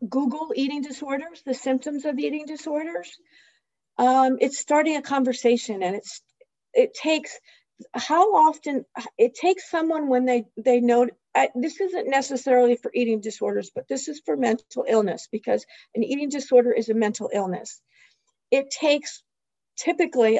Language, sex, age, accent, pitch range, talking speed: English, female, 50-69, American, 220-280 Hz, 145 wpm